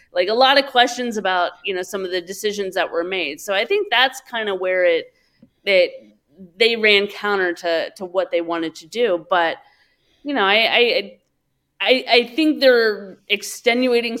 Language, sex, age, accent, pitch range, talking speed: English, female, 30-49, American, 175-250 Hz, 185 wpm